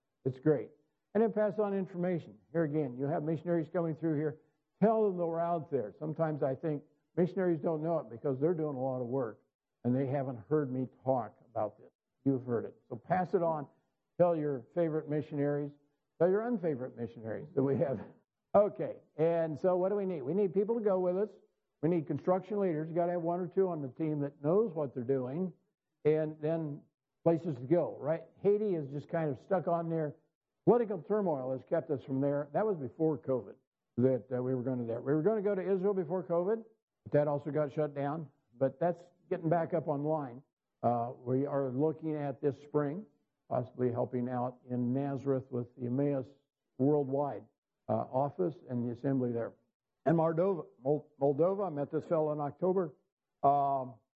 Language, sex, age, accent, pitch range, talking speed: English, male, 60-79, American, 135-175 Hz, 195 wpm